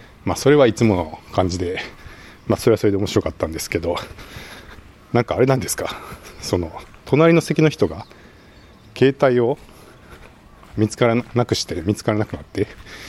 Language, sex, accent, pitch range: Japanese, male, native, 95-120 Hz